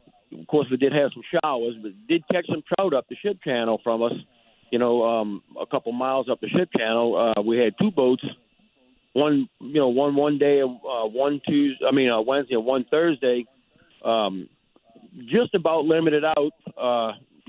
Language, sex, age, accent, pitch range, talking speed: English, male, 50-69, American, 120-150 Hz, 185 wpm